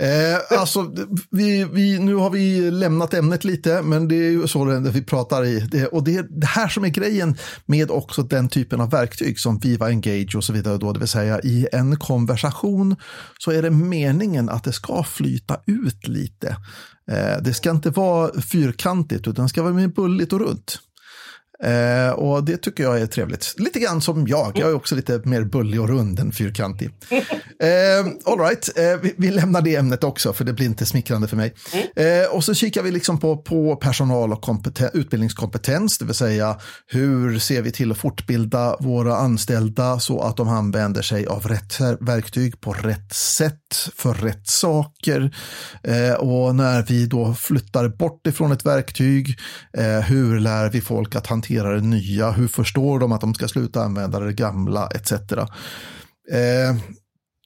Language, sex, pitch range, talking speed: Swedish, male, 115-165 Hz, 185 wpm